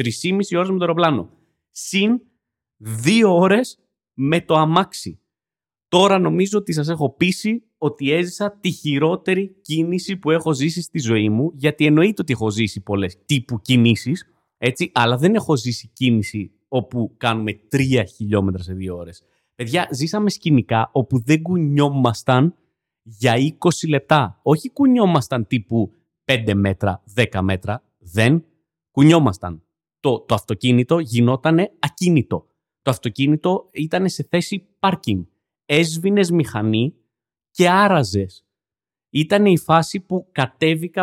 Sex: male